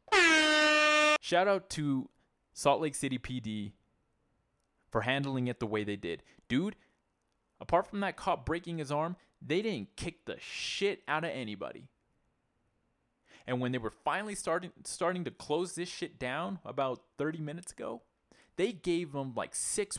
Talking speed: 155 wpm